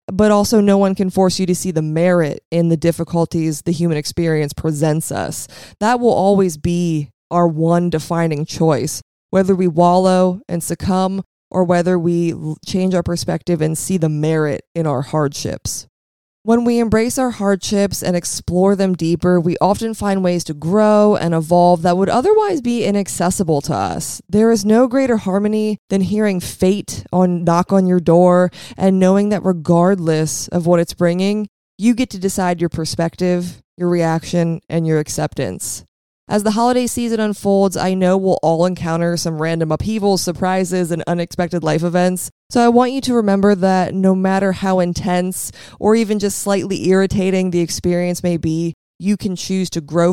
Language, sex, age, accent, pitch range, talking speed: English, female, 20-39, American, 165-195 Hz, 170 wpm